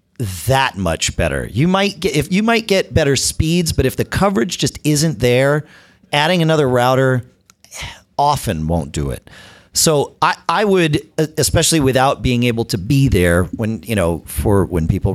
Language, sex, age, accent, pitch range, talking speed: English, male, 40-59, American, 95-135 Hz, 170 wpm